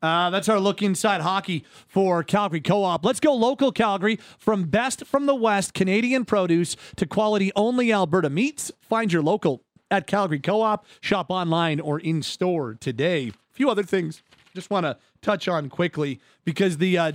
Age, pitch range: 30-49, 150-185 Hz